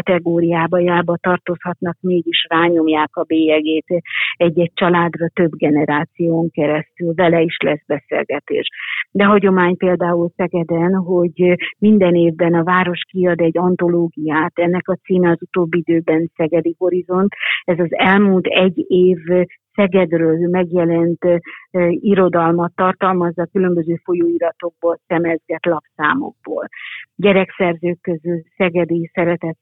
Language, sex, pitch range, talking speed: Hungarian, female, 165-180 Hz, 105 wpm